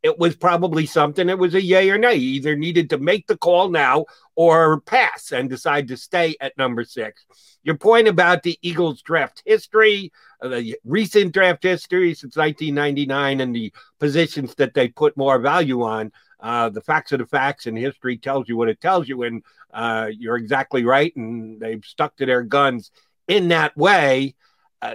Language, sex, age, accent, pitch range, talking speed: English, male, 50-69, American, 135-180 Hz, 190 wpm